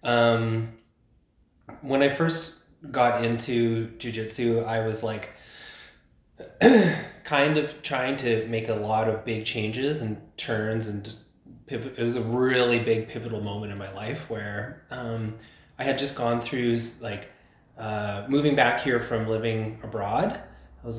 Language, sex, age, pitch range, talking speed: English, male, 20-39, 110-120 Hz, 145 wpm